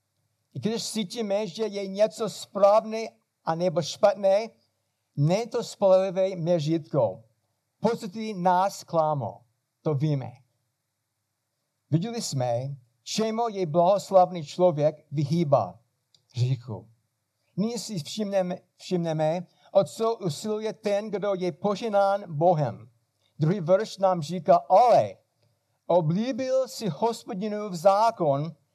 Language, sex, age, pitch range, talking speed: Czech, male, 60-79, 130-205 Hz, 100 wpm